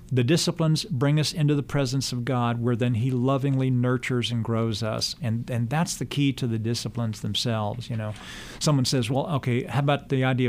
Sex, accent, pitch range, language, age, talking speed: male, American, 120-140 Hz, English, 50-69, 205 wpm